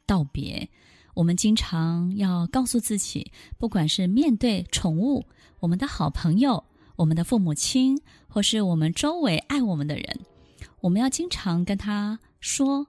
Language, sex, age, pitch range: Chinese, female, 20-39, 175-245 Hz